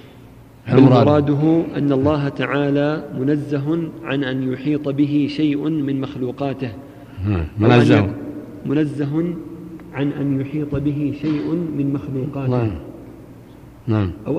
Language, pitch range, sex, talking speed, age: Arabic, 135-150 Hz, male, 90 wpm, 50-69